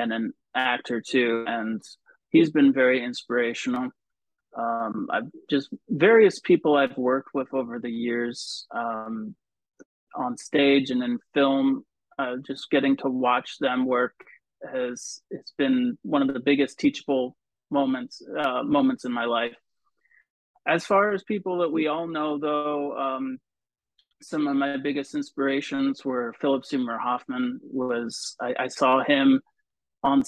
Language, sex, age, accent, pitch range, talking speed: English, male, 30-49, American, 125-190 Hz, 145 wpm